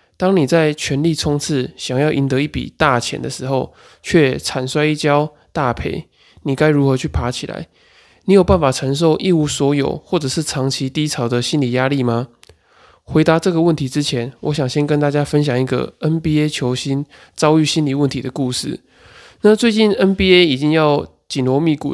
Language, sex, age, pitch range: Chinese, male, 20-39, 130-155 Hz